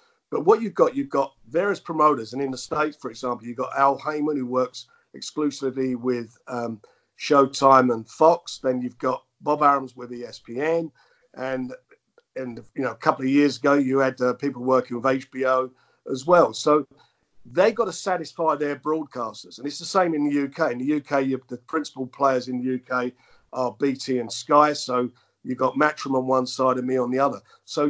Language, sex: English, male